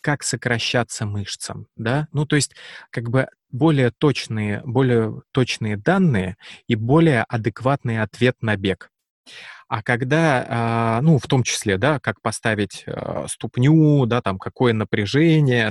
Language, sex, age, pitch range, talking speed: Russian, male, 20-39, 110-135 Hz, 130 wpm